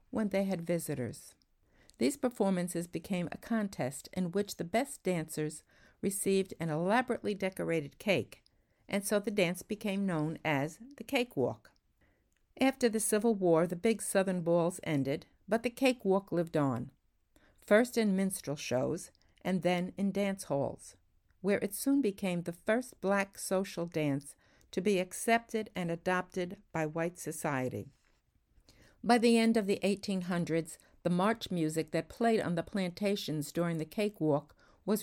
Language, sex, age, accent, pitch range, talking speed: English, female, 60-79, American, 155-205 Hz, 150 wpm